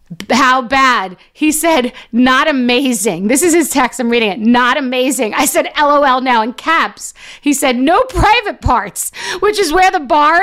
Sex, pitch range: female, 265-360 Hz